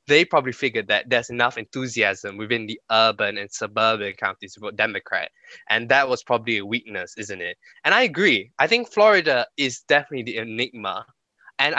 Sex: male